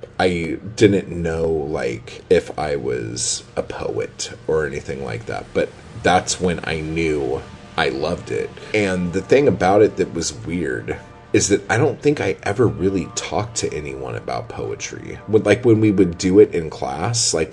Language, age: English, 30-49